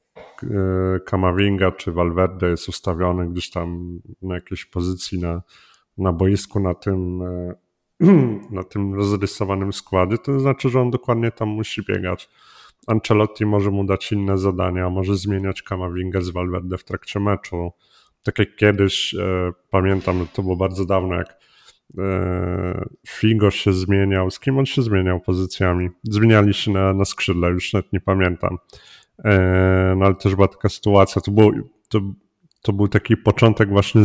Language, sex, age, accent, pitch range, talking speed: Polish, male, 30-49, native, 95-105 Hz, 145 wpm